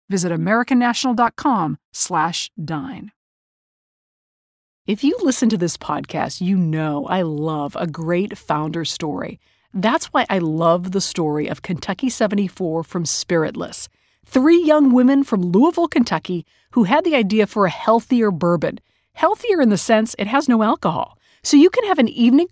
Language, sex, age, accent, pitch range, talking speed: English, female, 40-59, American, 175-250 Hz, 150 wpm